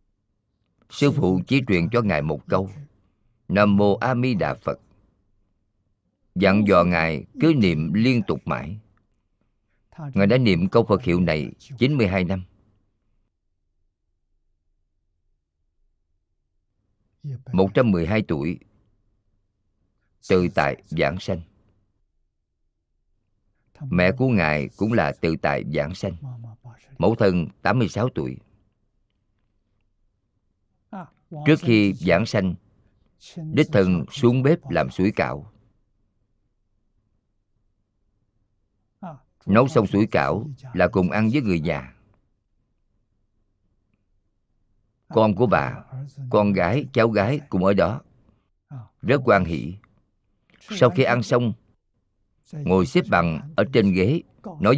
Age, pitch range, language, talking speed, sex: 50-69, 95-110 Hz, Vietnamese, 105 wpm, male